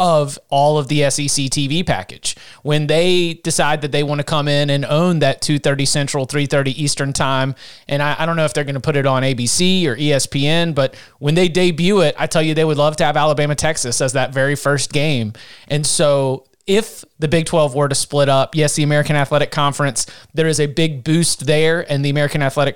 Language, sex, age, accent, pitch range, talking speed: English, male, 30-49, American, 145-180 Hz, 220 wpm